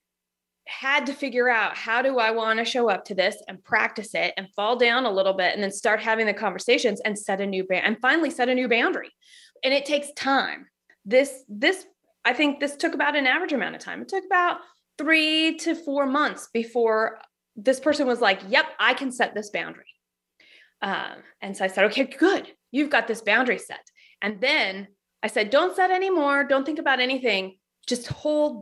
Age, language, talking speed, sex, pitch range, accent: 20-39, English, 205 wpm, female, 215-290 Hz, American